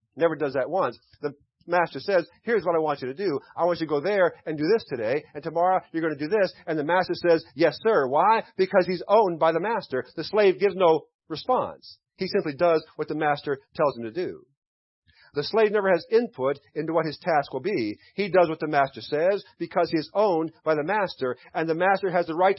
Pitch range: 145-190 Hz